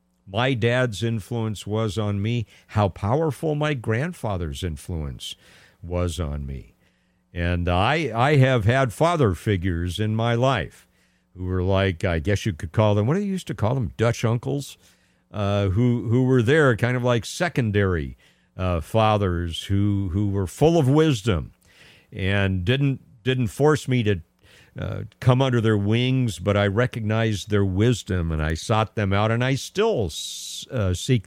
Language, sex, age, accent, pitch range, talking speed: English, male, 50-69, American, 95-130 Hz, 165 wpm